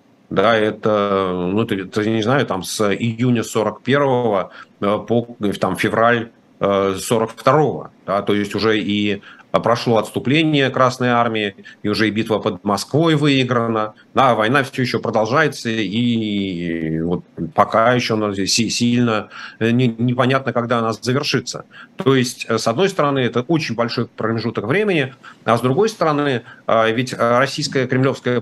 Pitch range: 110-140 Hz